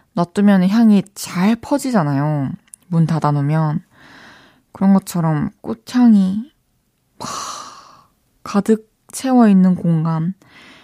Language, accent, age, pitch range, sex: Korean, native, 20-39, 175-270 Hz, female